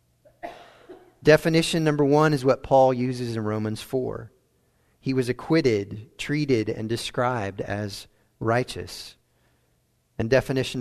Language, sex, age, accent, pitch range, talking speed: English, male, 40-59, American, 105-135 Hz, 110 wpm